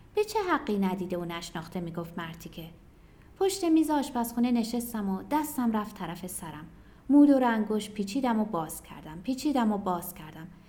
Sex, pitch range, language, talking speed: female, 190-290 Hz, Persian, 170 wpm